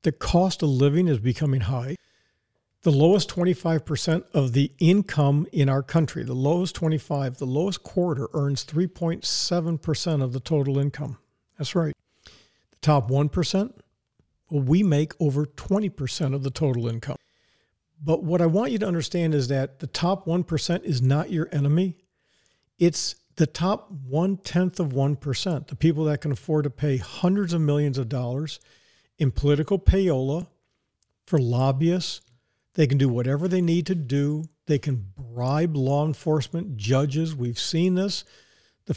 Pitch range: 140-175 Hz